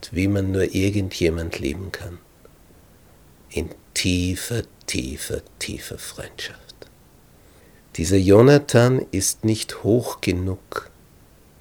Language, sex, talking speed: German, male, 90 wpm